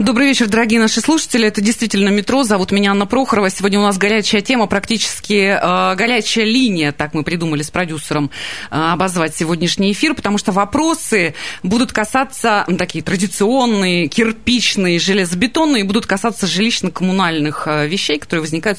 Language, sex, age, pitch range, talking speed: Russian, female, 30-49, 165-230 Hz, 145 wpm